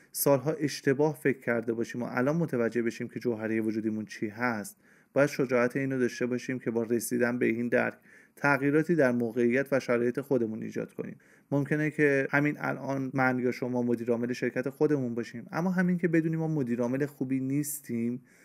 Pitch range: 115-145 Hz